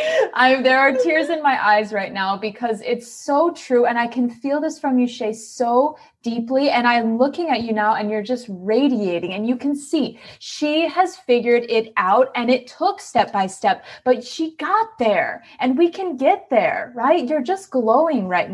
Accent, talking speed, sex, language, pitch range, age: American, 195 wpm, female, English, 220-280 Hz, 20-39